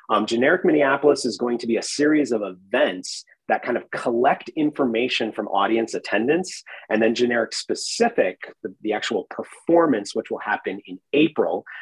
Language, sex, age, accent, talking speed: English, male, 30-49, American, 160 wpm